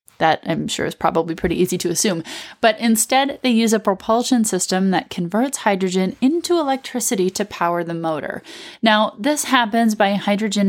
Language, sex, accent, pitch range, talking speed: English, female, American, 180-245 Hz, 170 wpm